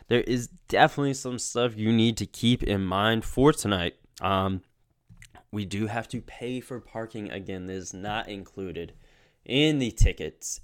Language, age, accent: English, 20-39, American